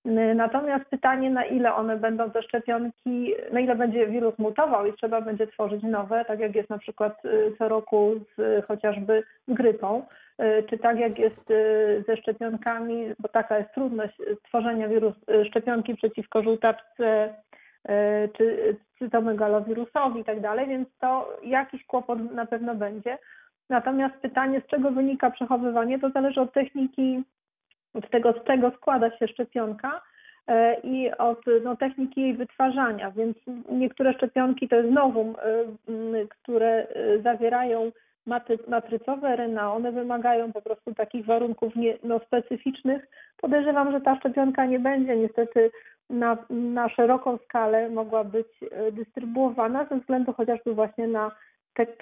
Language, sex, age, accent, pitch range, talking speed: Polish, female, 30-49, native, 220-255 Hz, 135 wpm